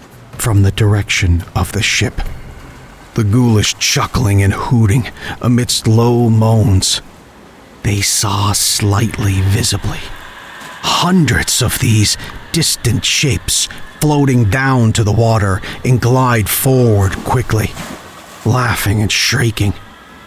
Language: English